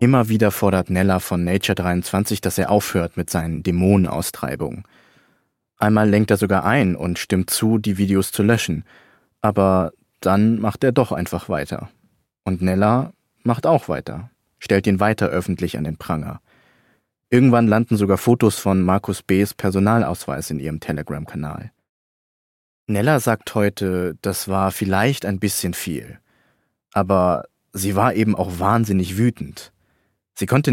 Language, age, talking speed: German, 30-49, 140 wpm